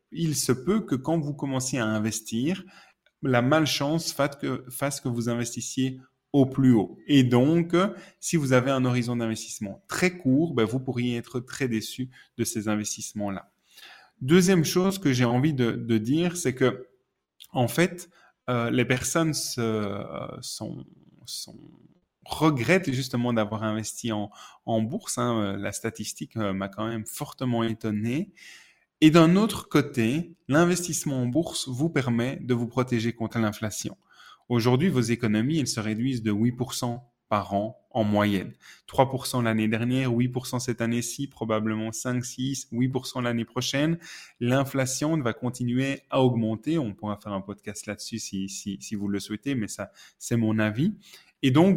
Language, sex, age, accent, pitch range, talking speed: French, male, 20-39, French, 115-145 Hz, 155 wpm